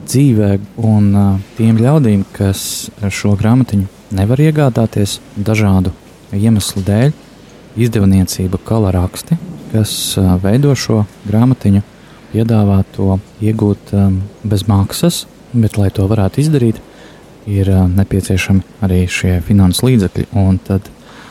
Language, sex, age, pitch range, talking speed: English, male, 20-39, 95-115 Hz, 100 wpm